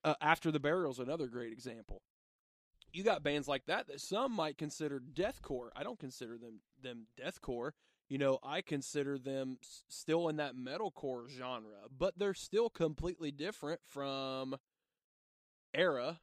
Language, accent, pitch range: English, American, 130-160 Hz